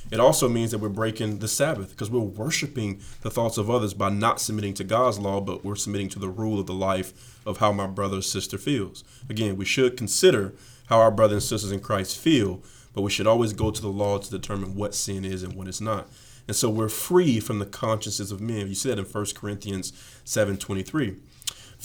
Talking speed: 225 wpm